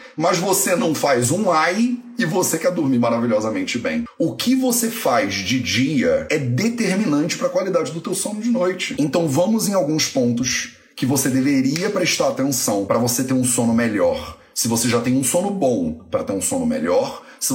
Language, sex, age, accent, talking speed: Portuguese, male, 30-49, Brazilian, 195 wpm